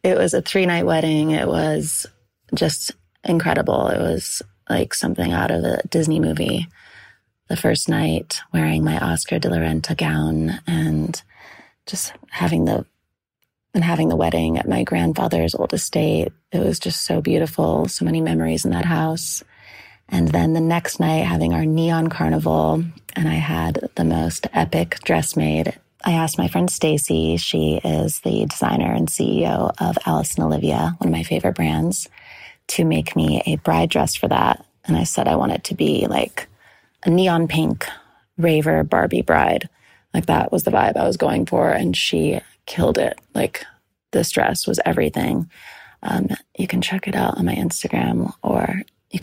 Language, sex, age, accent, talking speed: English, female, 20-39, American, 170 wpm